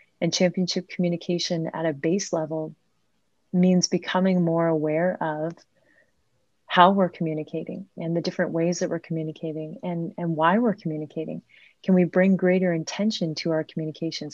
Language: English